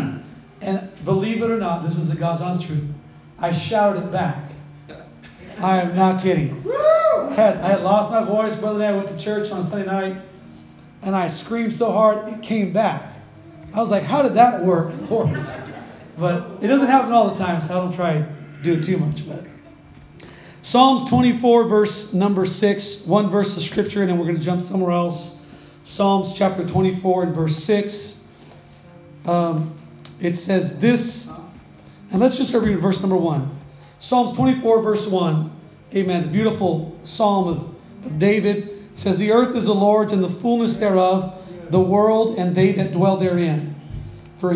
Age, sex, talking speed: 30-49, male, 170 wpm